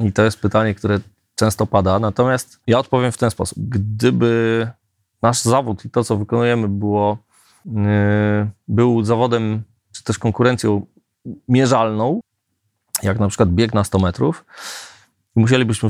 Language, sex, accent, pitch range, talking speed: Polish, male, native, 105-120 Hz, 130 wpm